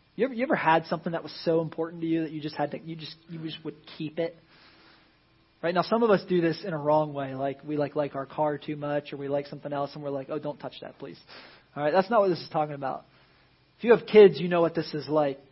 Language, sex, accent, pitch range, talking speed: English, male, American, 145-175 Hz, 290 wpm